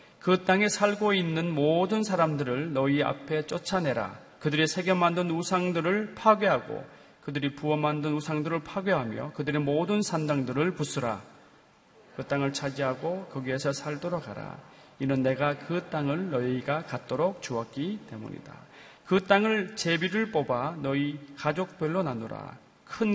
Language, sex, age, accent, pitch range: Korean, male, 40-59, native, 135-180 Hz